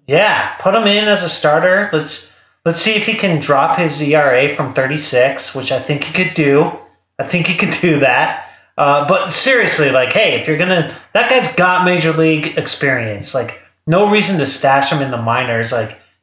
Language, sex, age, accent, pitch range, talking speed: English, male, 30-49, American, 125-155 Hz, 205 wpm